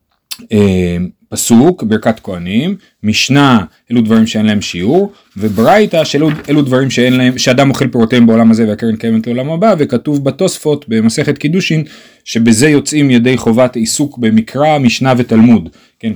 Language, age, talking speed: Hebrew, 30-49, 135 wpm